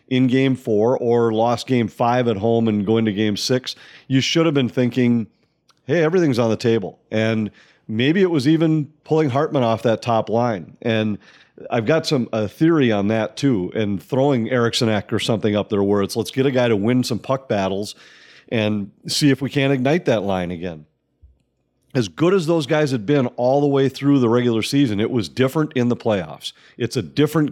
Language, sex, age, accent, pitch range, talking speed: English, male, 40-59, American, 110-140 Hz, 205 wpm